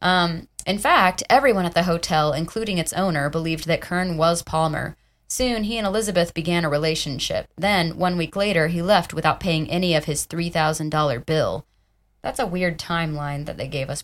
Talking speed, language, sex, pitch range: 185 wpm, English, female, 155-185 Hz